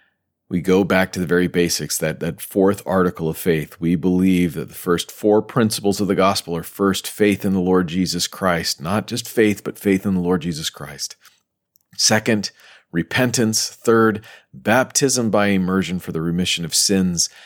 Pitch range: 85-105 Hz